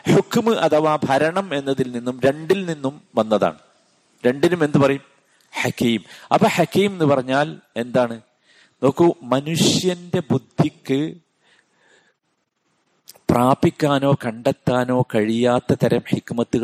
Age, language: 50-69, Malayalam